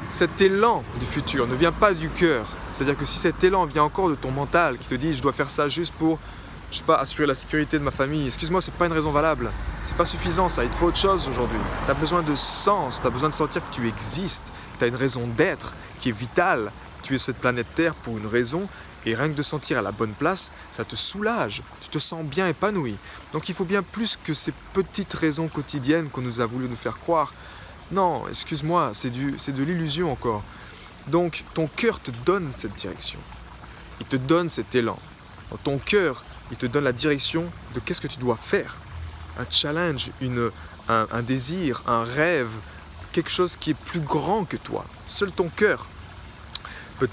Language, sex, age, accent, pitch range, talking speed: French, male, 20-39, French, 110-160 Hz, 215 wpm